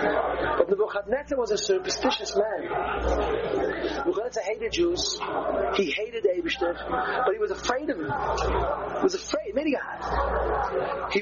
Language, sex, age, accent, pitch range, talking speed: English, male, 40-59, American, 235-375 Hz, 130 wpm